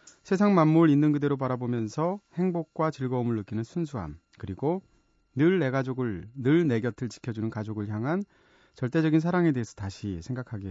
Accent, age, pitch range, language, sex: native, 30-49, 110-160 Hz, Korean, male